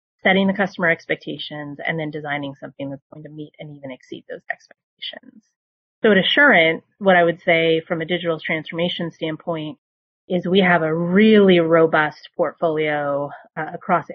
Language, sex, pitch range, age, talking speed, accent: English, female, 160-185 Hz, 30-49, 160 wpm, American